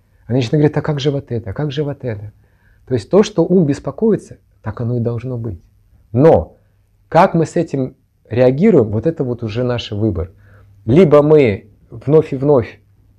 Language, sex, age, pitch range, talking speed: Russian, male, 30-49, 100-130 Hz, 180 wpm